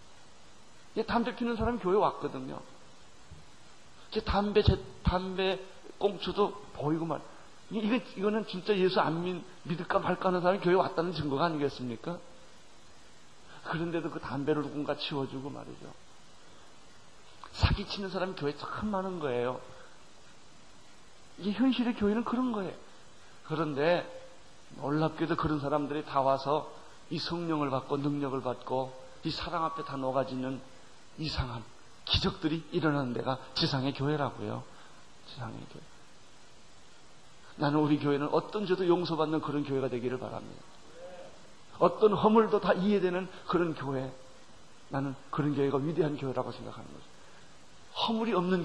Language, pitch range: Korean, 140-185 Hz